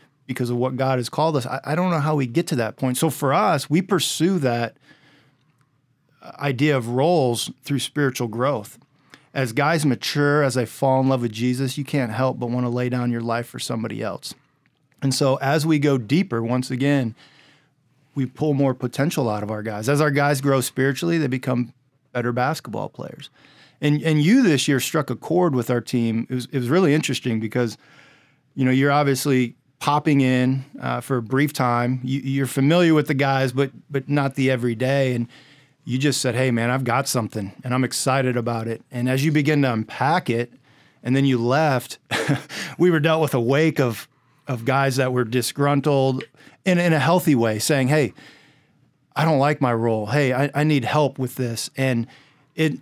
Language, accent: English, American